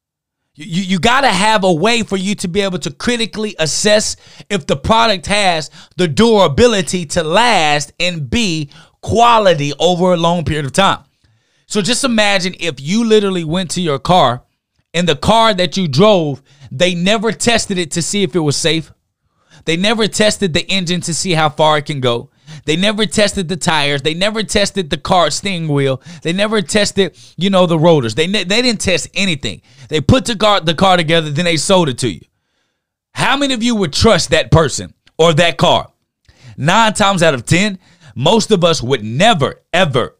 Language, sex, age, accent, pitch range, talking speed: English, male, 30-49, American, 150-205 Hz, 190 wpm